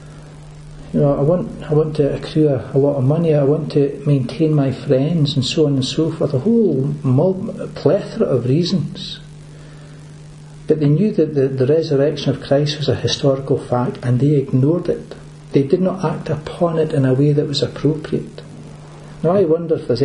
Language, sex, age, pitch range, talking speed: English, male, 60-79, 135-155 Hz, 190 wpm